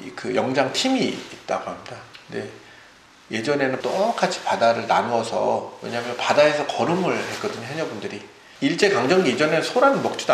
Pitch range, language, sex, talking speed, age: 125-195 Hz, English, male, 115 wpm, 40-59